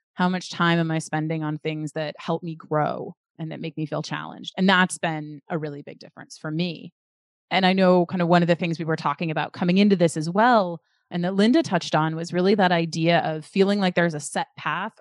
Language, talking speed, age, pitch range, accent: English, 245 wpm, 20-39, 165-200 Hz, American